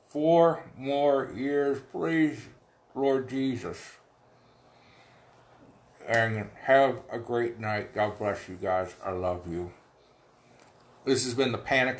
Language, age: English, 50-69